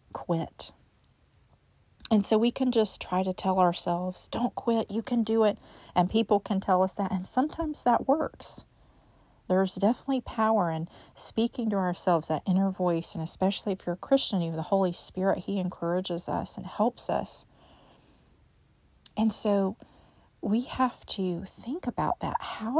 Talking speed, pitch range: 165 wpm, 170-225 Hz